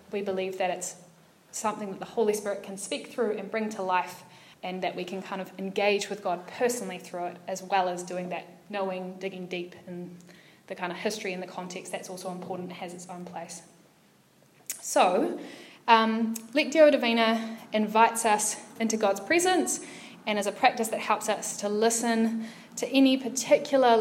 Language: English